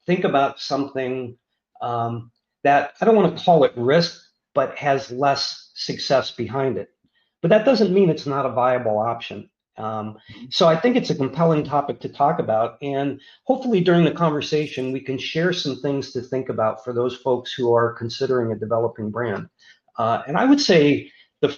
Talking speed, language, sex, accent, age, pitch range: 185 wpm, English, male, American, 40-59, 125-155 Hz